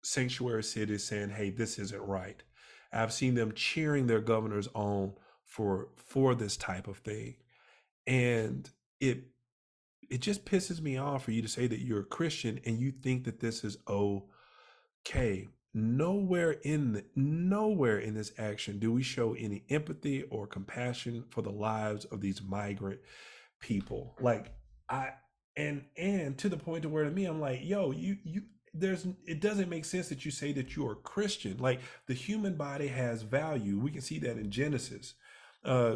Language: English